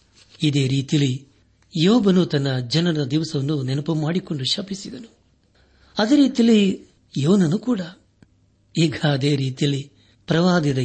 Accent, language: native, Kannada